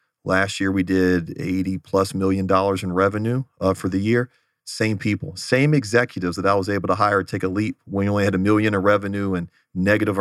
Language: English